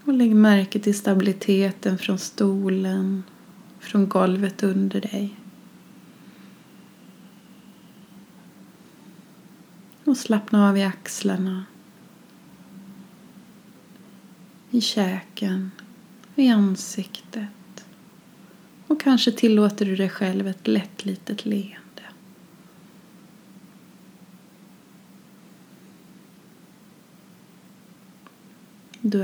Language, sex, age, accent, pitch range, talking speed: Swedish, female, 20-39, native, 195-215 Hz, 65 wpm